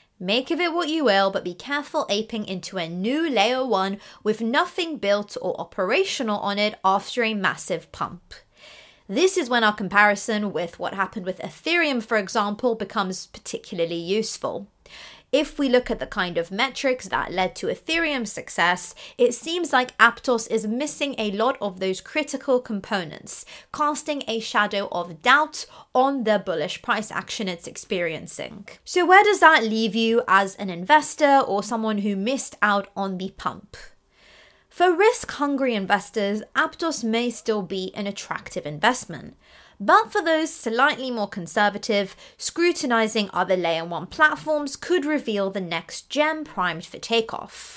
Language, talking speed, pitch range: English, 155 wpm, 195-285 Hz